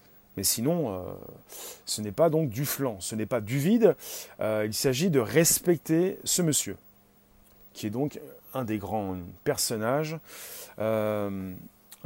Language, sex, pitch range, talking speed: French, male, 115-175 Hz, 145 wpm